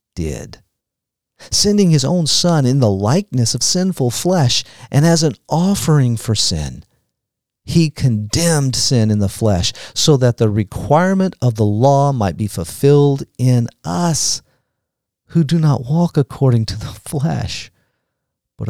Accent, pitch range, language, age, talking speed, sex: American, 100-135 Hz, English, 50-69, 140 wpm, male